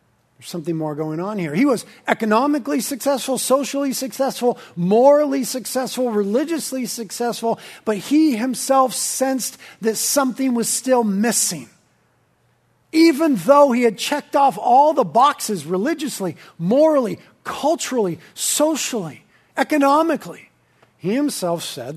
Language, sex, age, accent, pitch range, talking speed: English, male, 40-59, American, 160-250 Hz, 110 wpm